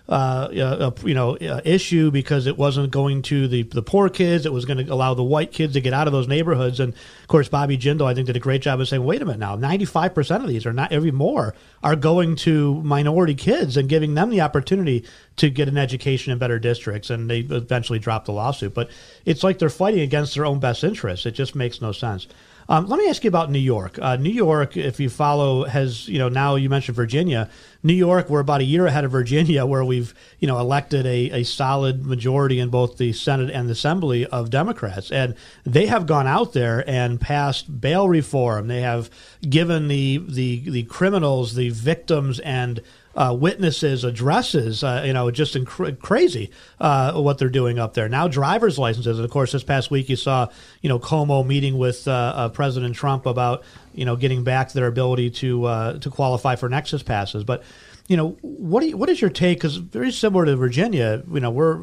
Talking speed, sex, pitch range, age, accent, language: 220 wpm, male, 125-155 Hz, 40-59, American, English